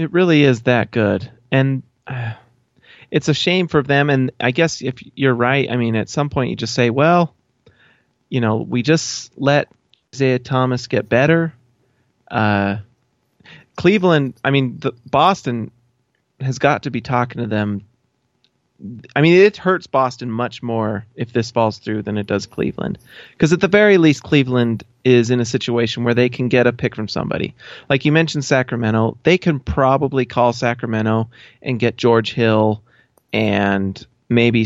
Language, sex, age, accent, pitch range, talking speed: English, male, 30-49, American, 115-140 Hz, 165 wpm